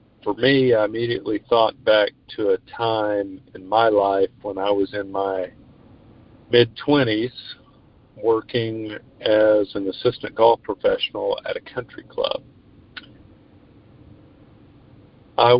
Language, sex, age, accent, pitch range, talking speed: English, male, 50-69, American, 110-135 Hz, 110 wpm